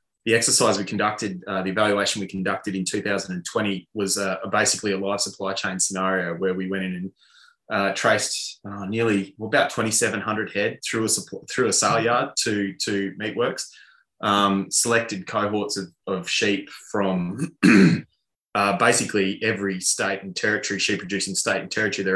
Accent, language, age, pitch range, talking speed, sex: Australian, English, 20-39, 95-105 Hz, 165 wpm, male